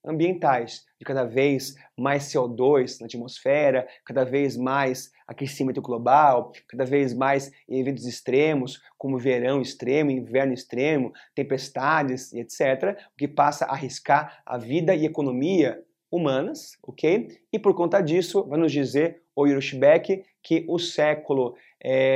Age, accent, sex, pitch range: 30-49, Brazilian, male, 135-175 Hz